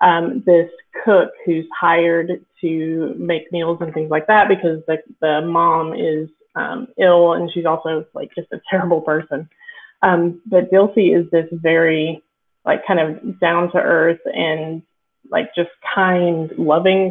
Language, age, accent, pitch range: English, 20-39, American, 165-200 Hz